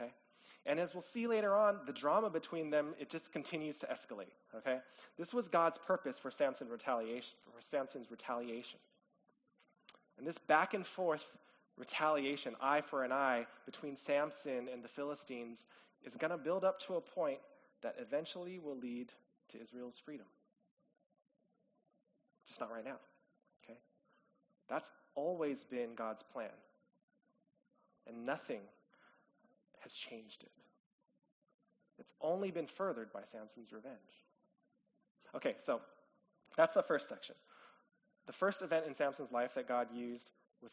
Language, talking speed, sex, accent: English, 135 wpm, male, American